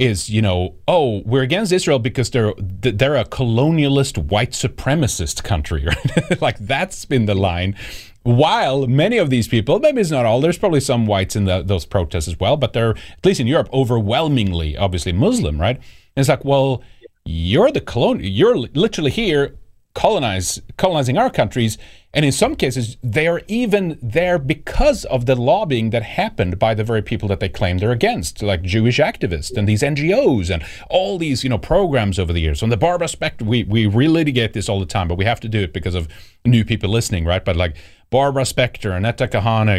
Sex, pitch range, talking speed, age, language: male, 95-135 Hz, 200 wpm, 40-59, English